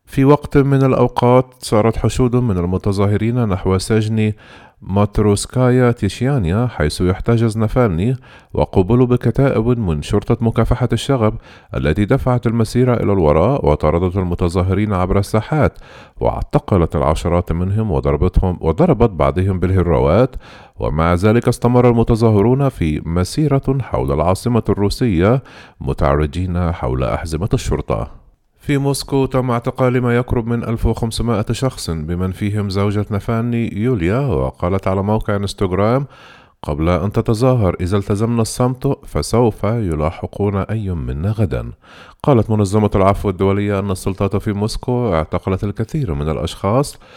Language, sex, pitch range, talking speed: Arabic, male, 90-120 Hz, 115 wpm